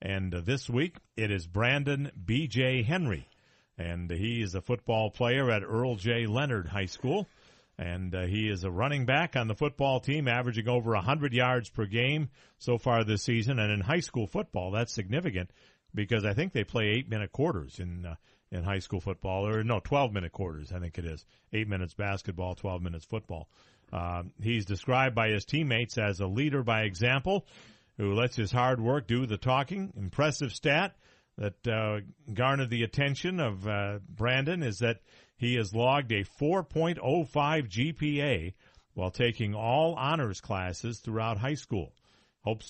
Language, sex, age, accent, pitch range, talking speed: English, male, 50-69, American, 100-130 Hz, 170 wpm